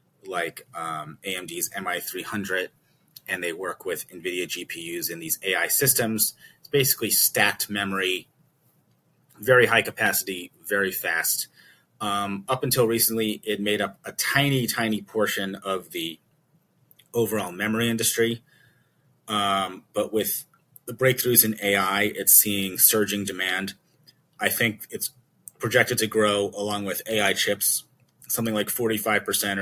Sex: male